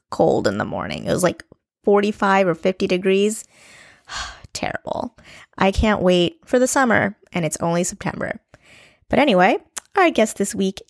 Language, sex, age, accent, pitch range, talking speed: English, female, 20-39, American, 180-220 Hz, 155 wpm